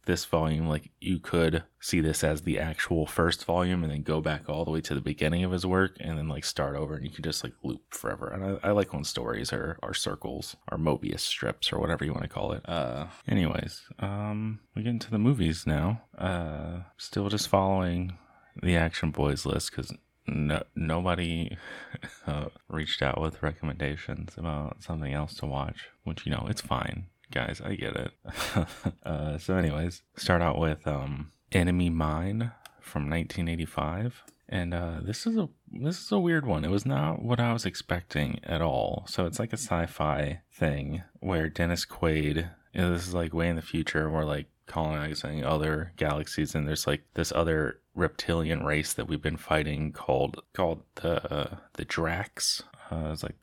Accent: American